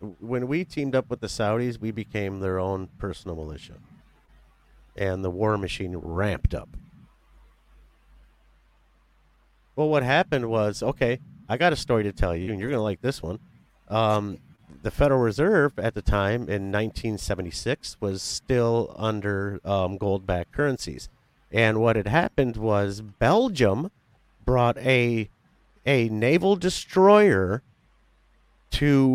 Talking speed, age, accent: 135 wpm, 40-59, American